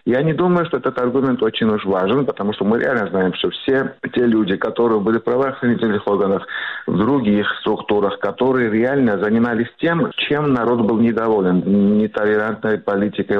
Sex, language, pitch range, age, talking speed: male, Arabic, 95-115 Hz, 50-69, 160 wpm